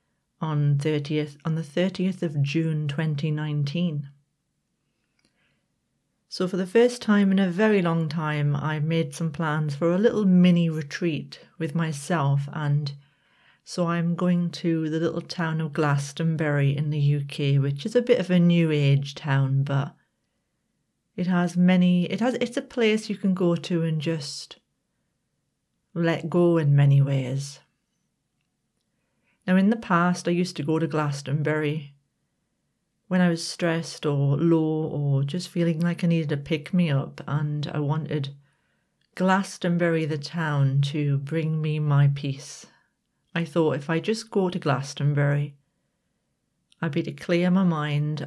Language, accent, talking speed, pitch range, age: English, British, 150 wpm, 145-180 Hz, 40-59